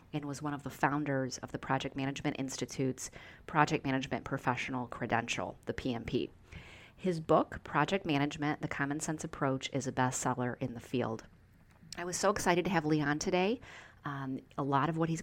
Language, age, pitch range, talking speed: English, 30-49, 130-155 Hz, 175 wpm